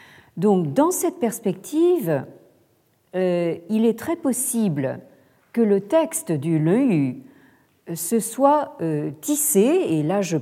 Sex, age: female, 50-69